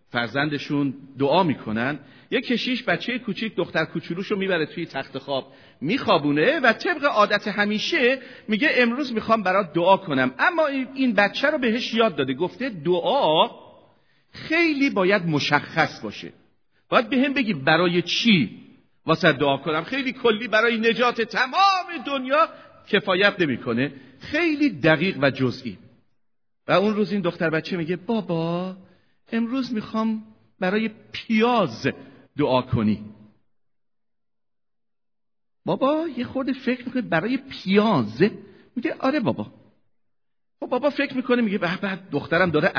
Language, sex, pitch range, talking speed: Persian, male, 155-230 Hz, 125 wpm